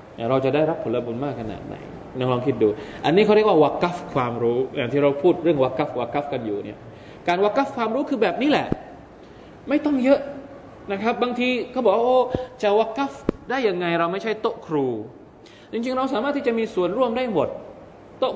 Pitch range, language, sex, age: 135-220 Hz, Thai, male, 20-39